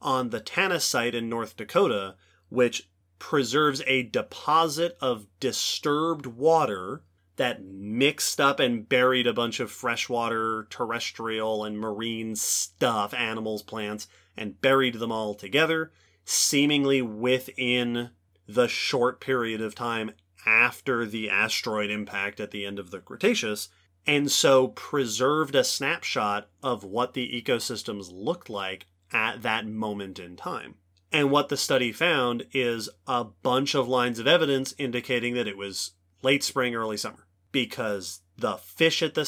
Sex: male